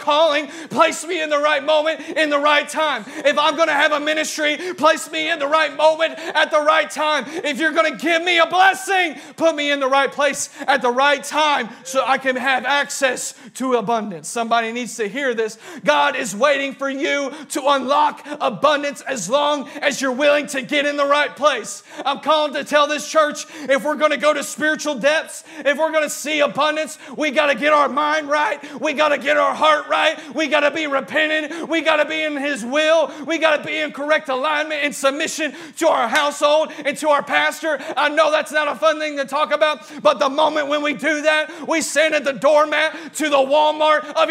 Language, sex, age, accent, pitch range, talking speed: English, male, 40-59, American, 285-310 Hz, 225 wpm